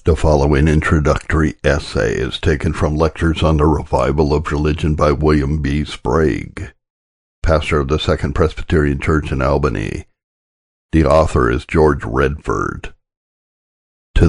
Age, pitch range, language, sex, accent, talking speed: 60-79, 65-80 Hz, English, male, American, 130 wpm